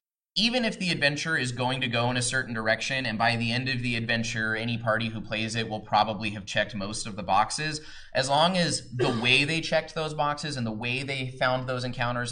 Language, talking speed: English, 235 wpm